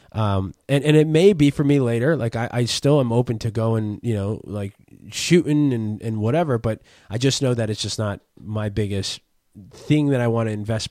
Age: 20-39